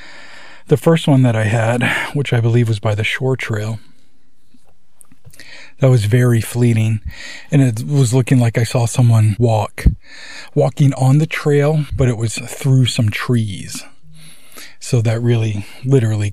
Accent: American